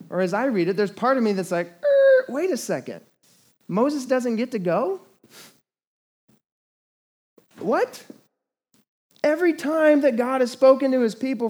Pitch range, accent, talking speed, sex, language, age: 155-225 Hz, American, 155 wpm, male, English, 20-39